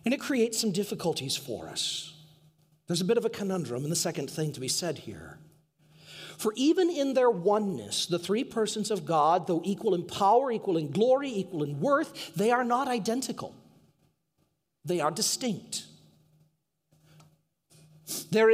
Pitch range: 160-245 Hz